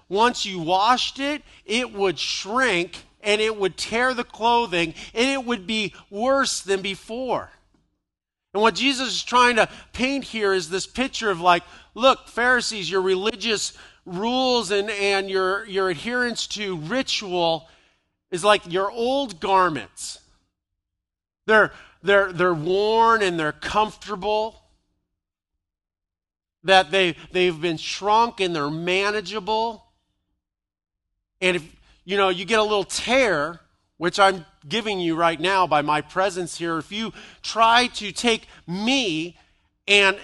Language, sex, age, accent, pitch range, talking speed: English, male, 40-59, American, 170-225 Hz, 135 wpm